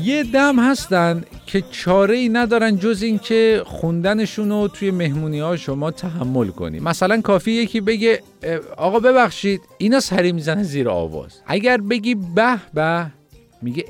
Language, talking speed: Persian, 145 wpm